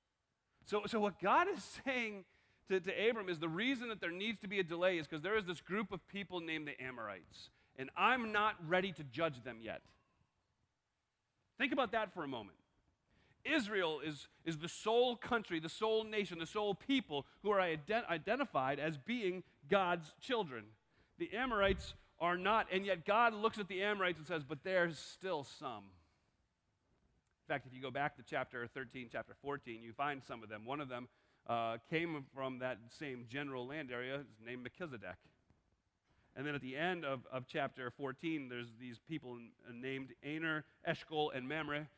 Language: English